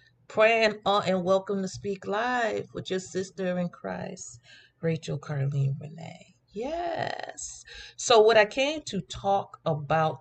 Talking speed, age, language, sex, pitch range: 135 wpm, 40-59, English, female, 135-175 Hz